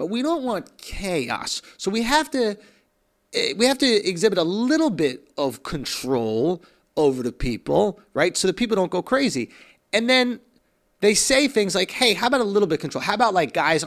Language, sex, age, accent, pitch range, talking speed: English, male, 30-49, American, 165-240 Hz, 200 wpm